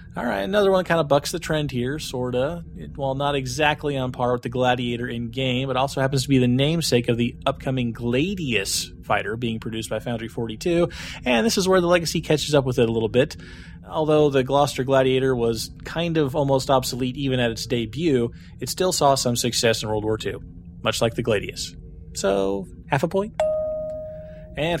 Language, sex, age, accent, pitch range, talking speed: English, male, 30-49, American, 115-150 Hz, 195 wpm